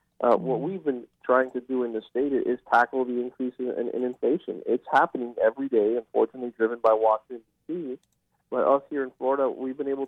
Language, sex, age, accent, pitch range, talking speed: English, male, 40-59, American, 115-130 Hz, 200 wpm